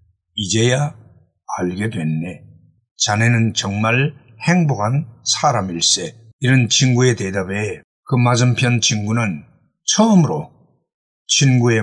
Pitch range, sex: 115-170 Hz, male